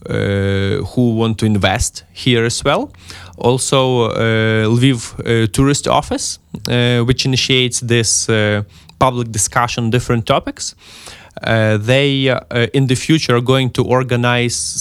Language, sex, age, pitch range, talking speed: Ukrainian, male, 20-39, 110-130 Hz, 140 wpm